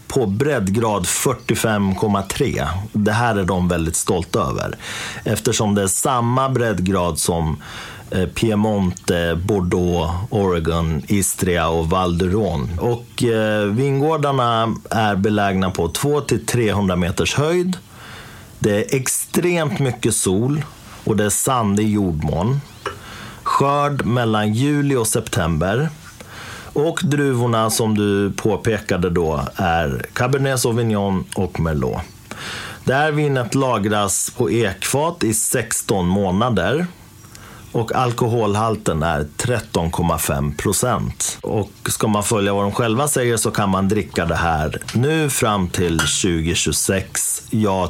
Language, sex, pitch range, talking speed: Swedish, male, 90-120 Hz, 110 wpm